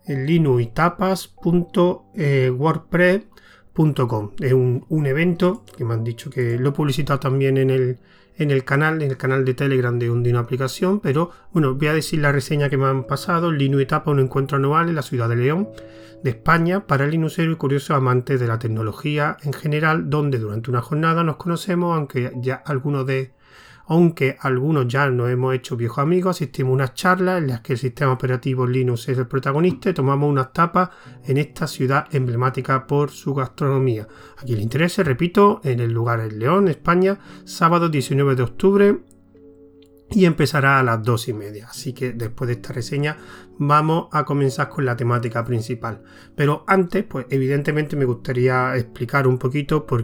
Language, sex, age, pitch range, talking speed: Spanish, male, 30-49, 125-150 Hz, 180 wpm